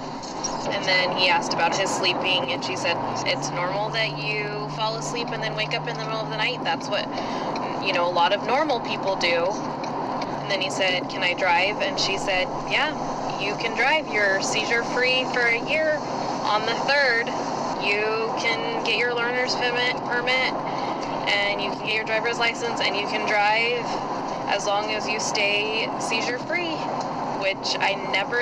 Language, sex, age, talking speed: English, female, 20-39, 185 wpm